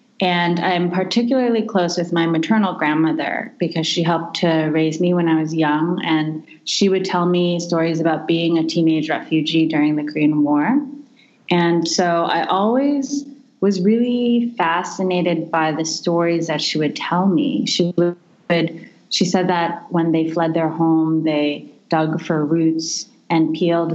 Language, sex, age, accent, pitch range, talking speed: English, female, 30-49, American, 160-195 Hz, 160 wpm